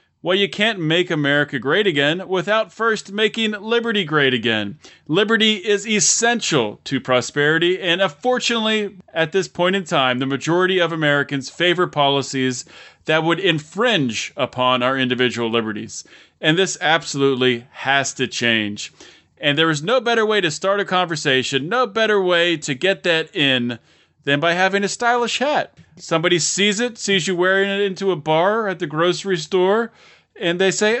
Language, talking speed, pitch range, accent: English, 165 wpm, 135-190 Hz, American